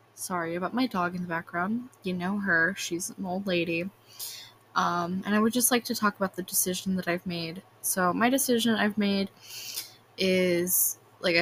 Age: 20-39